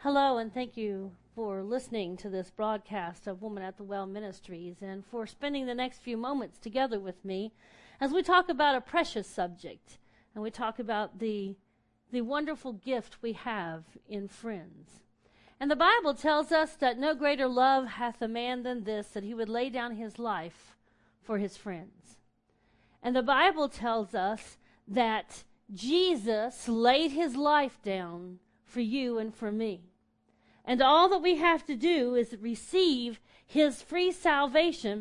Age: 40-59